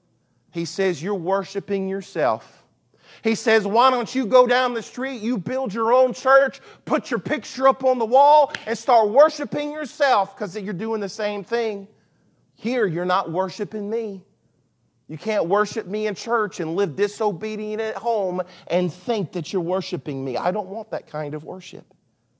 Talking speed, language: 175 wpm, English